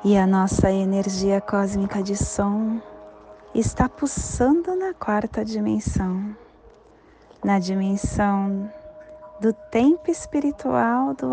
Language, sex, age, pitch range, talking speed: English, female, 20-39, 155-220 Hz, 95 wpm